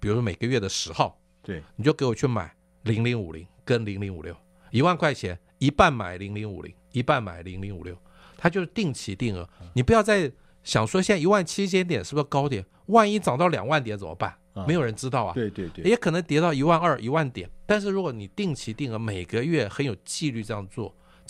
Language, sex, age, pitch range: Chinese, male, 50-69, 100-150 Hz